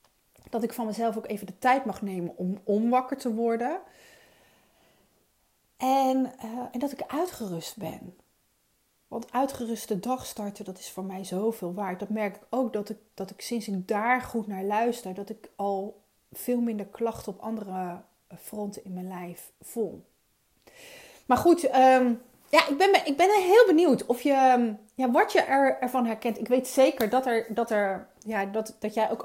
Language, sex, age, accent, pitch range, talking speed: Dutch, female, 30-49, Dutch, 205-255 Hz, 160 wpm